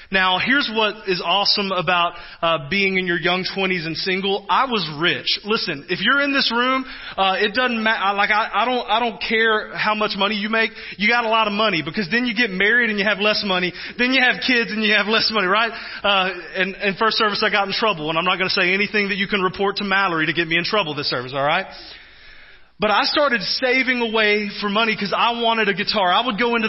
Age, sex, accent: 30-49, male, American